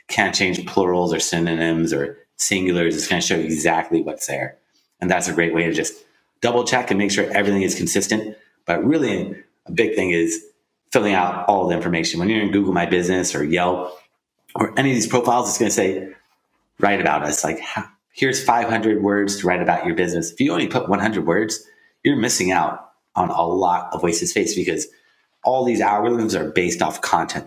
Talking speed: 205 wpm